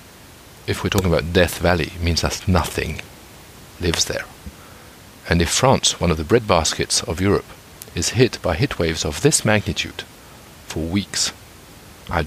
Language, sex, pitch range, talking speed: English, male, 80-105 Hz, 155 wpm